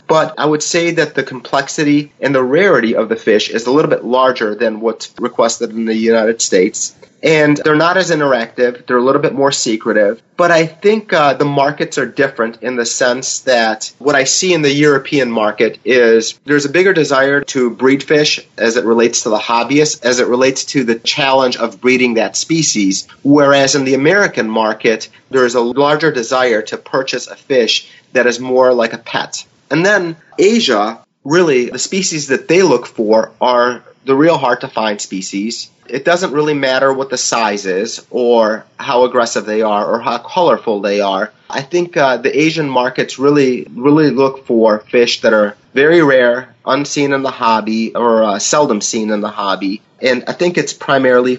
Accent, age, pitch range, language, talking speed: American, 30-49, 120-150 Hz, English, 190 wpm